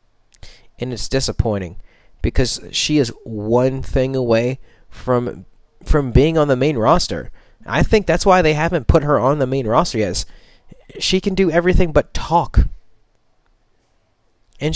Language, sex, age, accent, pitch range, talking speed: English, male, 30-49, American, 120-190 Hz, 145 wpm